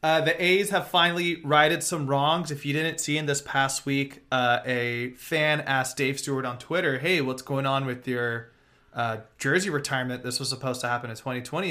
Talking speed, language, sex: 205 wpm, English, male